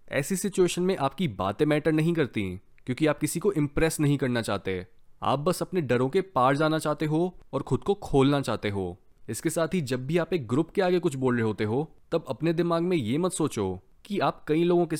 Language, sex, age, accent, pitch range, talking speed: Hindi, male, 20-39, native, 120-165 Hz, 230 wpm